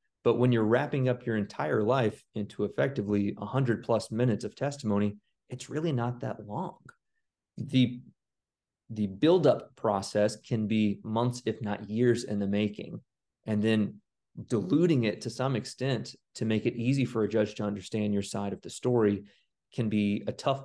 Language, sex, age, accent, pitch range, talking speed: English, male, 30-49, American, 105-120 Hz, 170 wpm